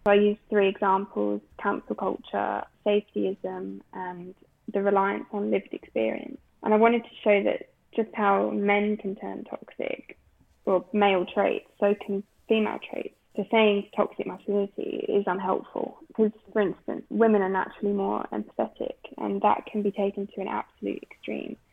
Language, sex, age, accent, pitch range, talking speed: English, female, 10-29, British, 185-210 Hz, 155 wpm